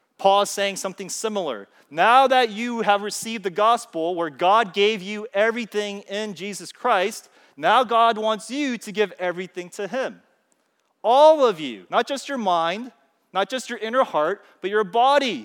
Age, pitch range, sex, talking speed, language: 30-49, 160-220 Hz, male, 170 wpm, English